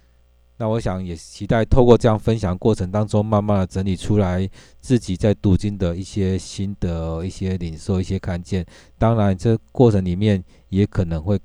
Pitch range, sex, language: 90-115 Hz, male, Chinese